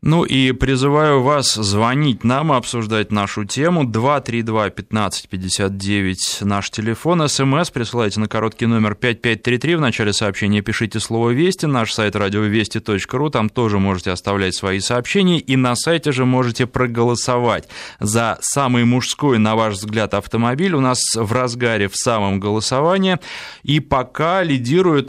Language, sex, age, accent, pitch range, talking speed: Russian, male, 20-39, native, 105-135 Hz, 135 wpm